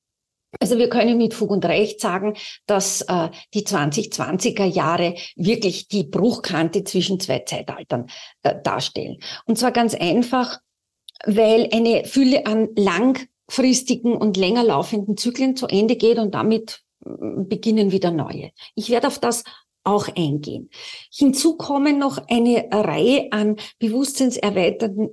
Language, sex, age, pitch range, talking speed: German, female, 40-59, 190-245 Hz, 135 wpm